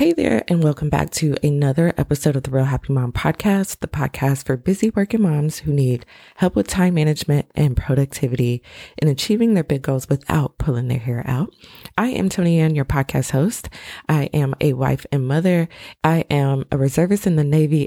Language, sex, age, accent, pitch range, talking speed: English, female, 20-39, American, 135-165 Hz, 195 wpm